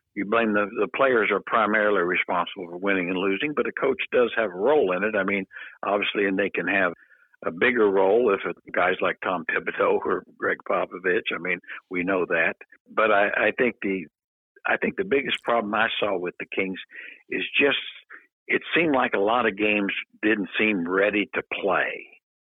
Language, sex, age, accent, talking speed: English, male, 60-79, American, 200 wpm